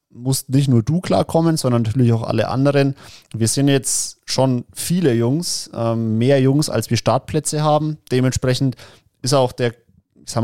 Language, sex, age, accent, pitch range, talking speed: German, male, 30-49, German, 115-140 Hz, 155 wpm